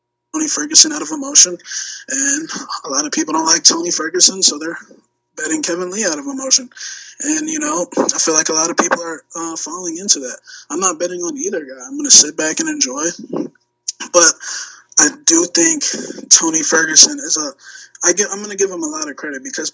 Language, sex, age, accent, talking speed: English, male, 20-39, American, 215 wpm